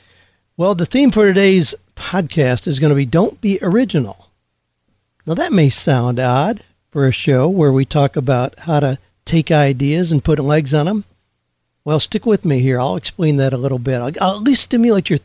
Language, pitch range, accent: English, 125-175 Hz, American